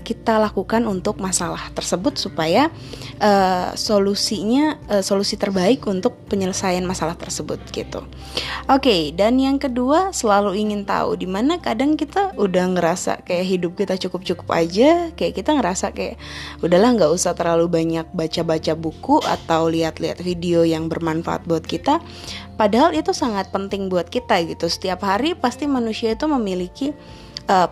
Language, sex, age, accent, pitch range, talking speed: Indonesian, female, 20-39, native, 170-235 Hz, 150 wpm